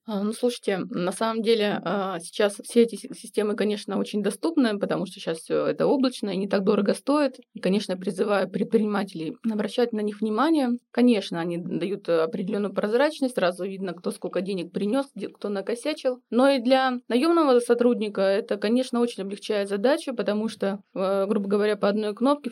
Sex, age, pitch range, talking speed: female, 20-39, 190-235 Hz, 165 wpm